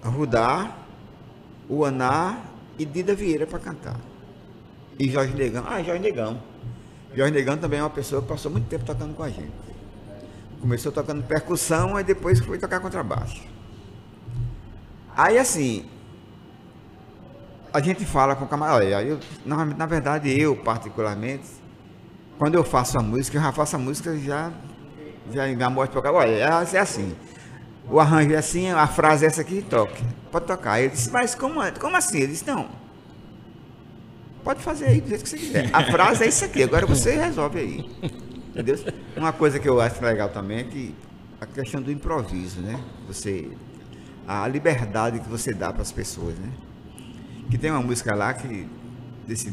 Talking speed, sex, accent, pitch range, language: 170 wpm, male, Brazilian, 115-155 Hz, Portuguese